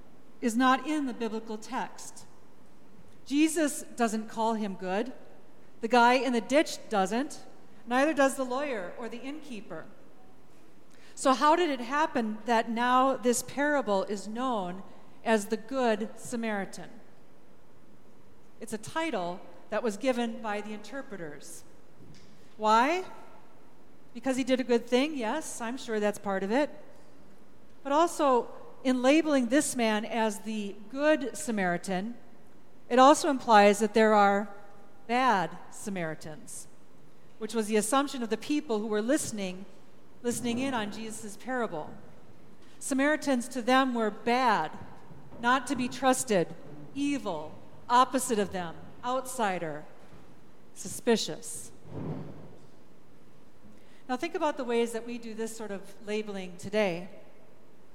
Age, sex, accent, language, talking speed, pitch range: 40-59, female, American, English, 125 wpm, 215-265 Hz